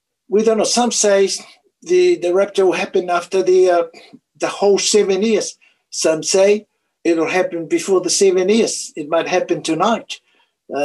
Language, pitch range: English, 170-225 Hz